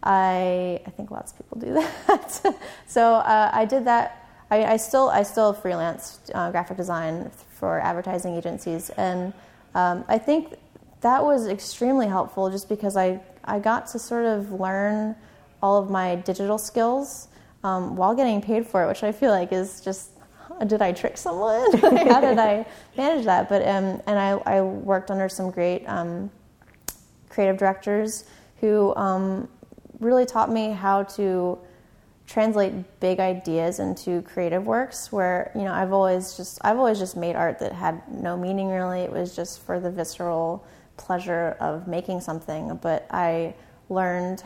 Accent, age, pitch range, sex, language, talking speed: American, 20-39, 180-215 Hz, female, English, 165 wpm